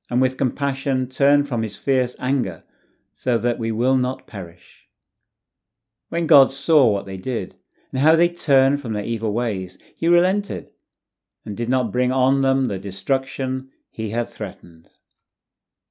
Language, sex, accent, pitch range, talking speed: English, male, British, 115-150 Hz, 155 wpm